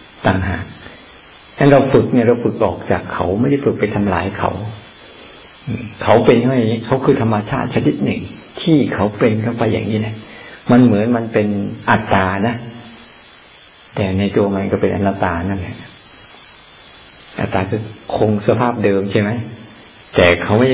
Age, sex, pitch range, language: 60-79, male, 100-120 Hz, Thai